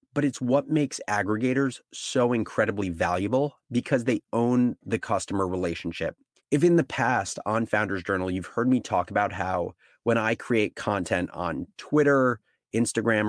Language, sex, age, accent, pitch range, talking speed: English, male, 30-49, American, 105-130 Hz, 155 wpm